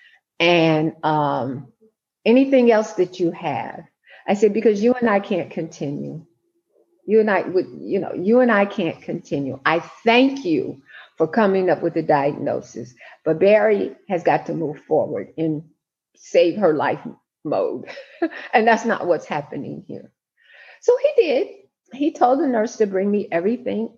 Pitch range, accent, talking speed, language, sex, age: 180-275 Hz, American, 160 wpm, English, female, 50-69